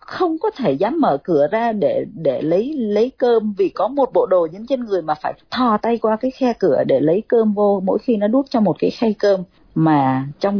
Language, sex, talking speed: Vietnamese, female, 245 wpm